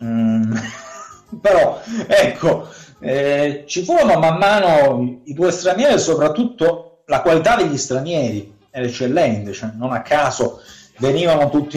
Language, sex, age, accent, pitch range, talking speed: Italian, male, 30-49, native, 130-195 Hz, 125 wpm